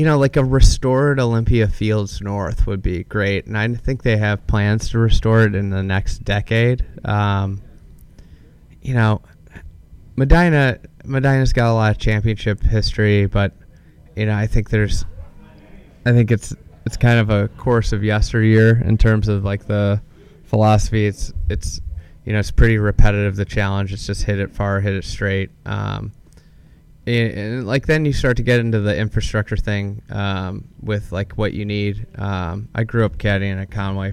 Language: English